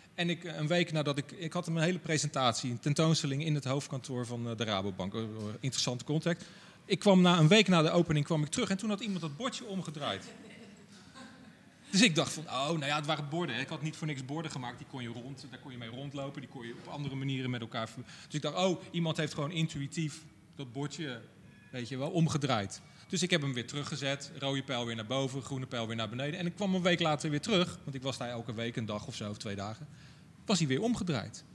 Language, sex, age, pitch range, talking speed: Dutch, male, 40-59, 140-175 Hz, 245 wpm